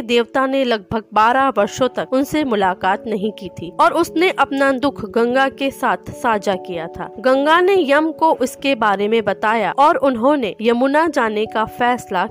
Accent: native